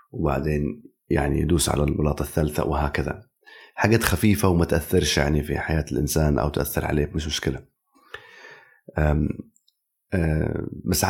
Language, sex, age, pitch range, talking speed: Arabic, male, 30-49, 75-90 Hz, 125 wpm